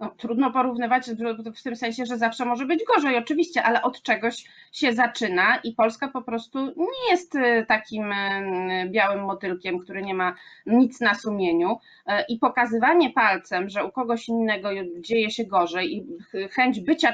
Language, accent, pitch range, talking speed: Polish, native, 220-305 Hz, 155 wpm